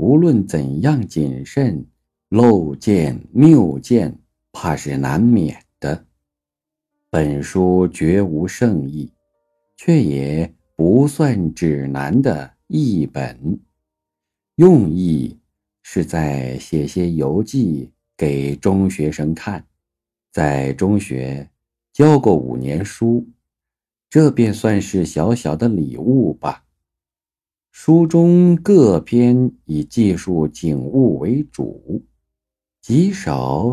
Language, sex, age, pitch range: Chinese, male, 50-69, 70-115 Hz